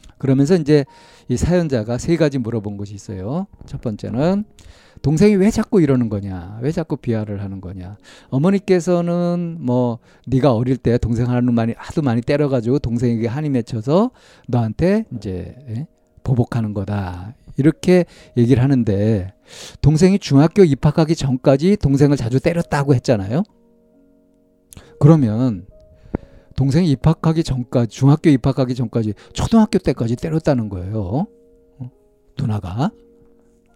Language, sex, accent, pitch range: Korean, male, native, 115-170 Hz